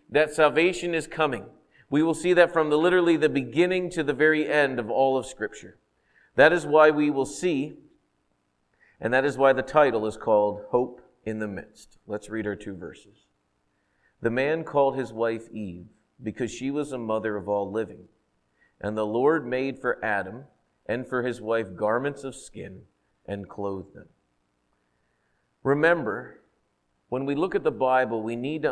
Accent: American